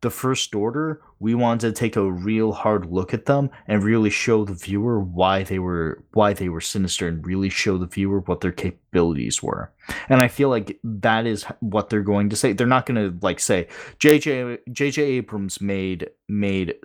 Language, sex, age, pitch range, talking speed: English, male, 20-39, 90-115 Hz, 200 wpm